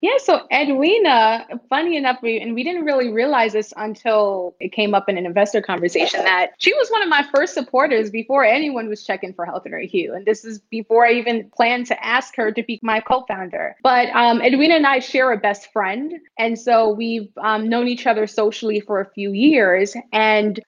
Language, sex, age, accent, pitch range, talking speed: English, female, 20-39, American, 205-240 Hz, 210 wpm